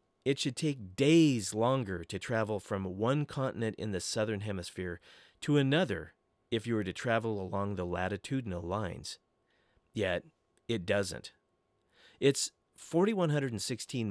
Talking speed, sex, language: 130 wpm, male, English